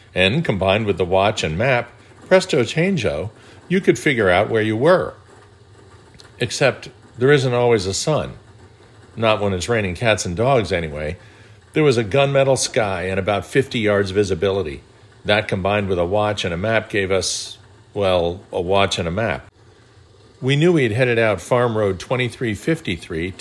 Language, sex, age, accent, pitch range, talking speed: English, male, 50-69, American, 100-125 Hz, 165 wpm